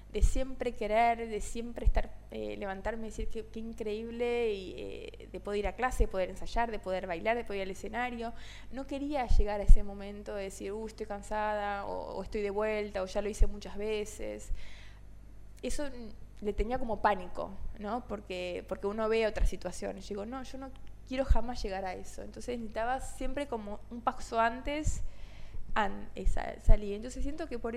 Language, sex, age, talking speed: Spanish, female, 20-39, 185 wpm